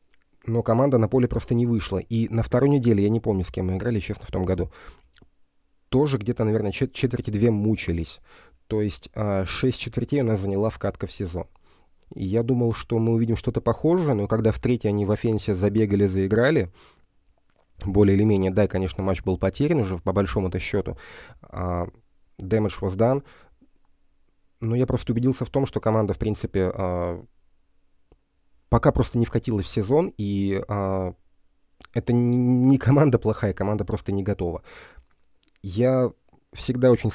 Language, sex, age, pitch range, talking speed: Russian, male, 30-49, 95-115 Hz, 165 wpm